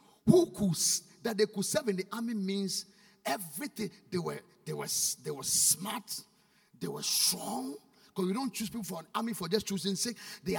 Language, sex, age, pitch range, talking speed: English, male, 50-69, 205-240 Hz, 195 wpm